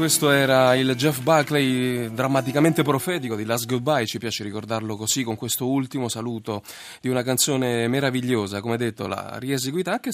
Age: 30-49